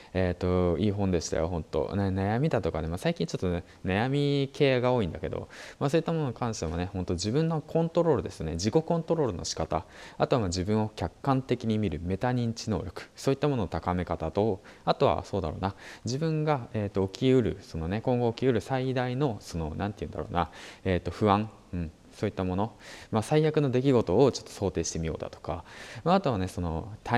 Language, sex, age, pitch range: Japanese, male, 20-39, 90-135 Hz